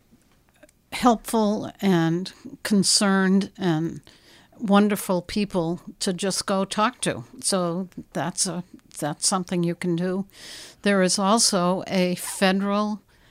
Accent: American